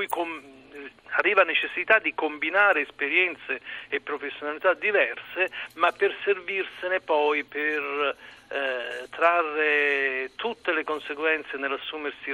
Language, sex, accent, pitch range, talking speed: Italian, male, native, 140-180 Hz, 95 wpm